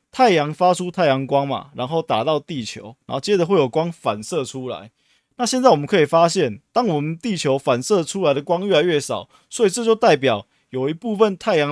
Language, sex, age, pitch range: Chinese, male, 20-39, 135-185 Hz